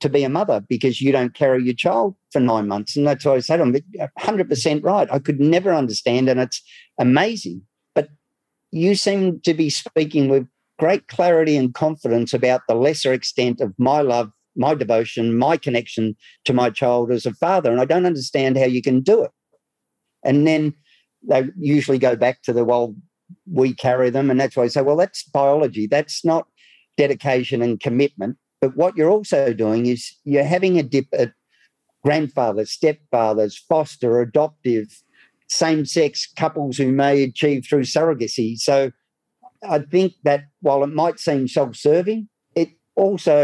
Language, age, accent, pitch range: English, 50-69, Australian, 125-155 Hz